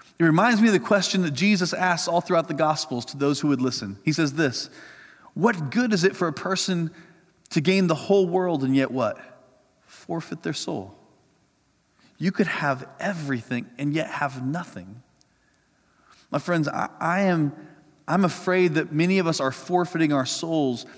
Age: 30-49